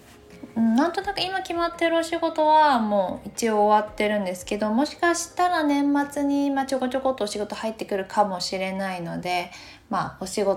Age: 20-39